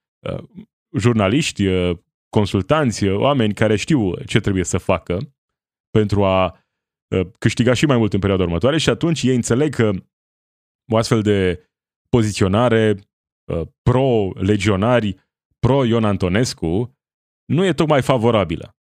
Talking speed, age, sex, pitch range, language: 110 wpm, 30-49, male, 100-125 Hz, Romanian